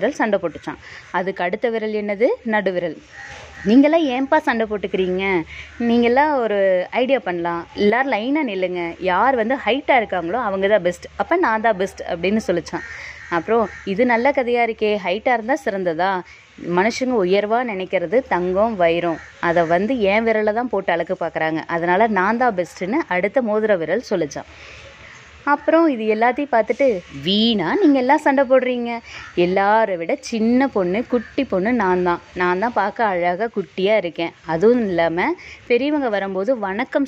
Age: 20-39